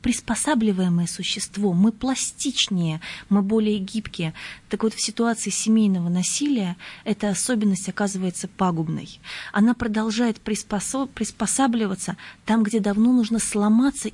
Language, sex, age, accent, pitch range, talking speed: Russian, female, 20-39, native, 190-230 Hz, 110 wpm